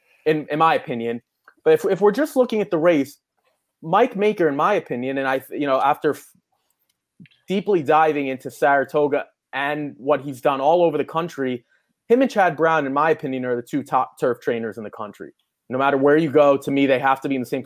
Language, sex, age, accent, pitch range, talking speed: English, male, 20-39, American, 145-190 Hz, 225 wpm